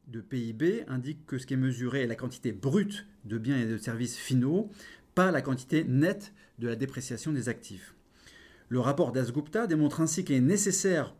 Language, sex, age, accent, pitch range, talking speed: French, male, 30-49, French, 125-165 Hz, 190 wpm